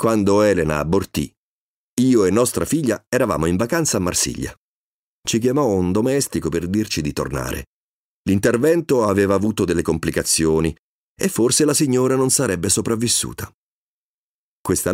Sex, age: male, 40-59